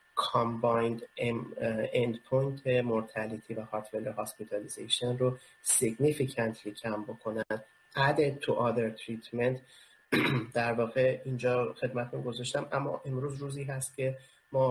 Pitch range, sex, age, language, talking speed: 115-130 Hz, male, 30-49, Persian, 105 wpm